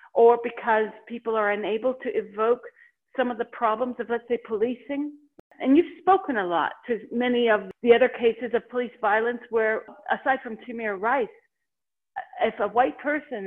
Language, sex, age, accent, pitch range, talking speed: English, female, 50-69, American, 220-285 Hz, 170 wpm